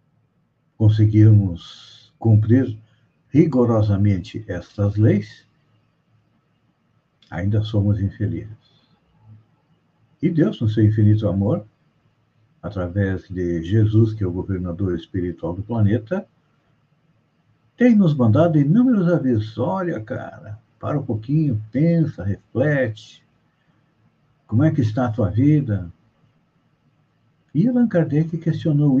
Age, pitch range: 60-79, 105-150 Hz